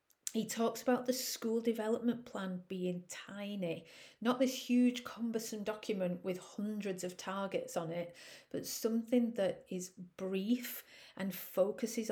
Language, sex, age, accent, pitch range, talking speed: English, female, 40-59, British, 180-225 Hz, 135 wpm